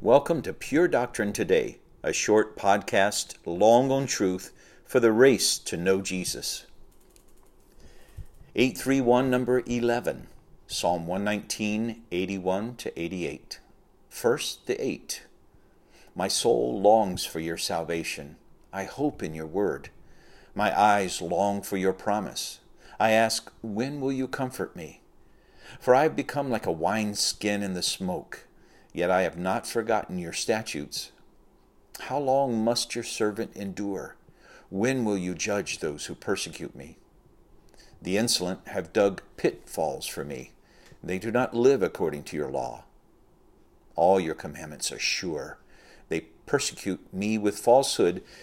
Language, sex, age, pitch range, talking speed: English, male, 50-69, 95-120 Hz, 135 wpm